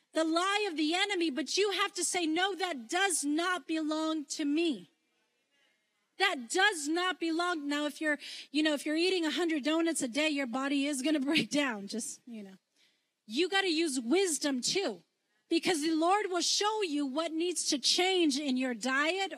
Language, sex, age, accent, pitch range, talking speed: English, female, 30-49, American, 290-360 Hz, 190 wpm